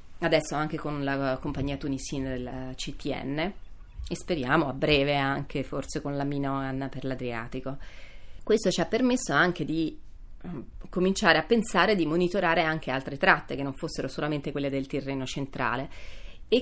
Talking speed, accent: 150 wpm, native